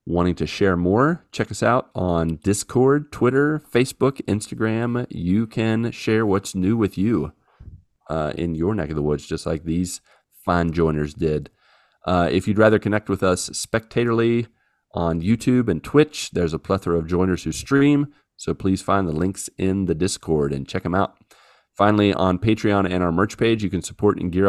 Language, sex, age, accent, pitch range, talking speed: English, male, 30-49, American, 85-110 Hz, 185 wpm